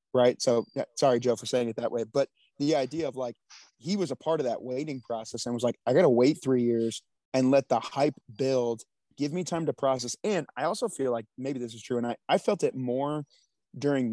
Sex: male